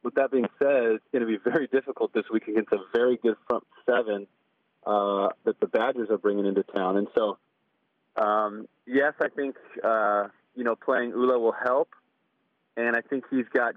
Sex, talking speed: male, 190 wpm